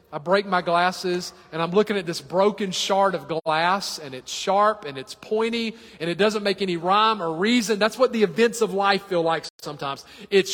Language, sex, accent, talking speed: English, male, American, 210 wpm